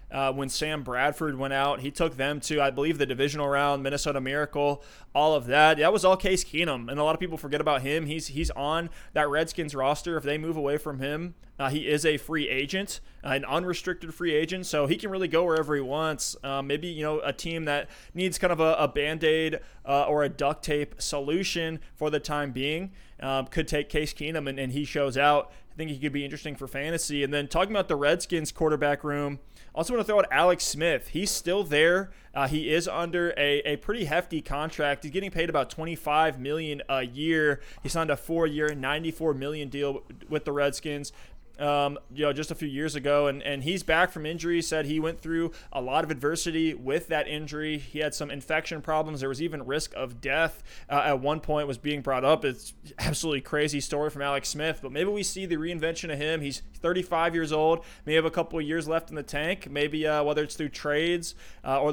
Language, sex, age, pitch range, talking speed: English, male, 20-39, 145-165 Hz, 225 wpm